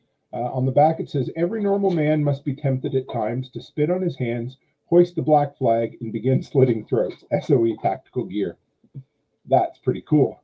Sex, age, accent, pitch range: male, 40-59, American, 130-165 Hz